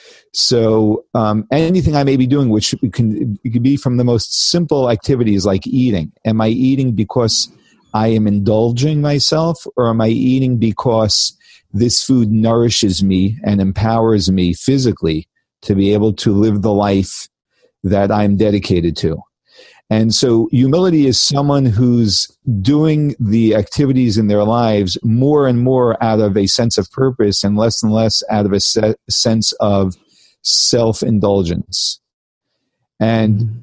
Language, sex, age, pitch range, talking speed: English, male, 40-59, 105-130 Hz, 150 wpm